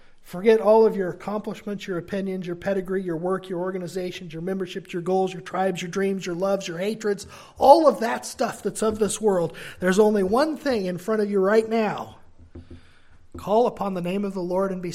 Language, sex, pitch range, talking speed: English, male, 170-210 Hz, 210 wpm